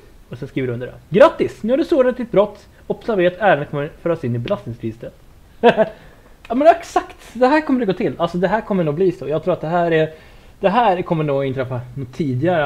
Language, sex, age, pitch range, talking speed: Swedish, male, 30-49, 120-160 Hz, 245 wpm